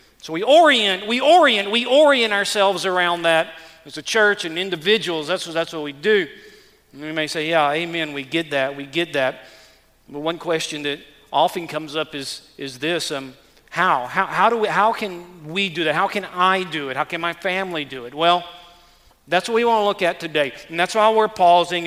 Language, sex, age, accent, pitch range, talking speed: English, male, 40-59, American, 155-210 Hz, 205 wpm